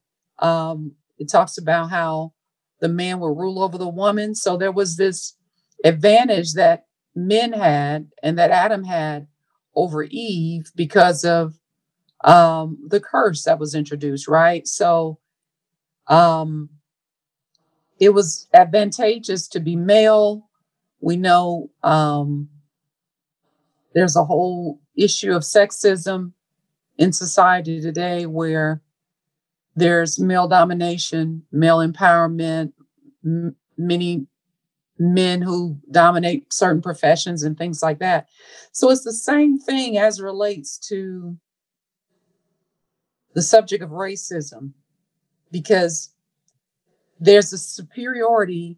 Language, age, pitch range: English, 50-69, 160-190 Hz